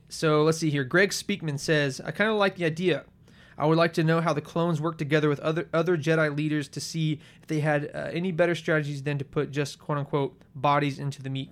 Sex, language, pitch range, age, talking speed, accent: male, English, 140-165 Hz, 20-39, 240 wpm, American